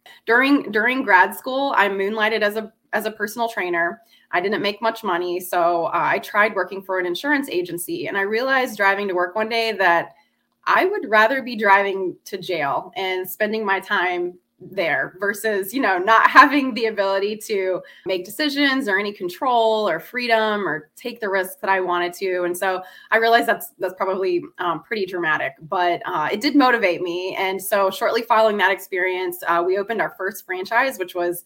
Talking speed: 190 wpm